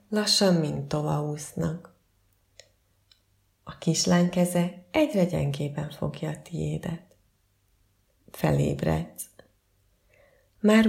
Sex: female